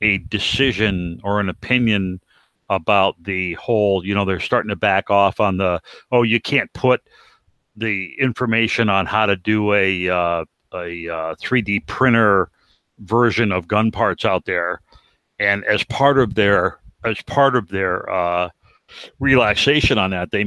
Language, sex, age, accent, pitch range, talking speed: English, male, 60-79, American, 90-110 Hz, 155 wpm